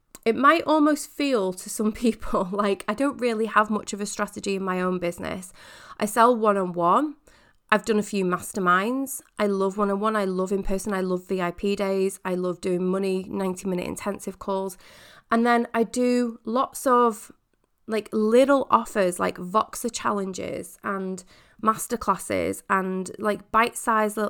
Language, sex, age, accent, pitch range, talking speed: English, female, 20-39, British, 190-230 Hz, 155 wpm